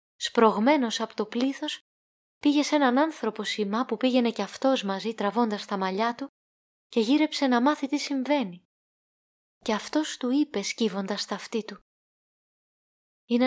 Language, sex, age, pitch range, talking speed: Greek, female, 20-39, 220-275 Hz, 145 wpm